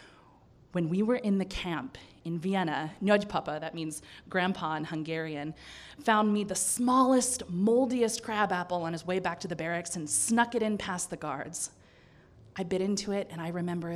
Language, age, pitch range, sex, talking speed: English, 20-39, 160-210 Hz, female, 180 wpm